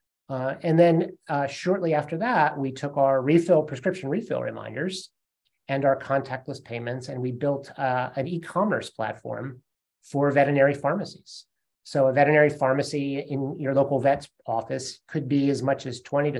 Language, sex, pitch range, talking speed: English, male, 125-145 Hz, 160 wpm